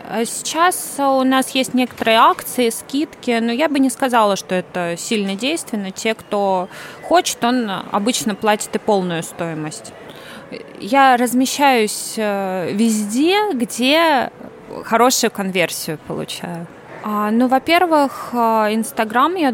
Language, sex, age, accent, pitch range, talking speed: Russian, female, 20-39, native, 195-240 Hz, 110 wpm